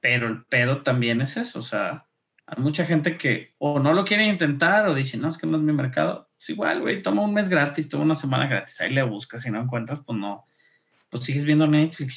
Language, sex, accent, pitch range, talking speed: Spanish, male, Mexican, 130-165 Hz, 240 wpm